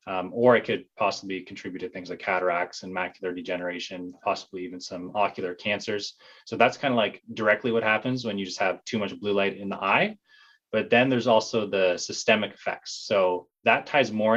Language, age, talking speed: English, 20-39, 200 wpm